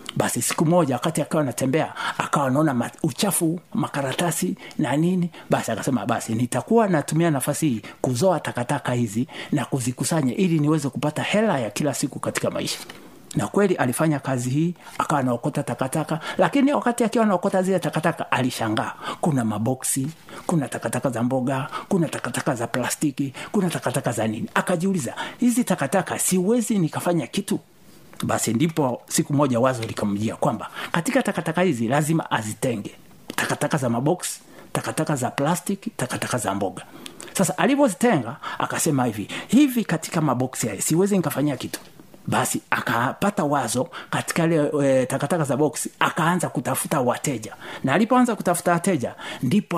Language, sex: Swahili, male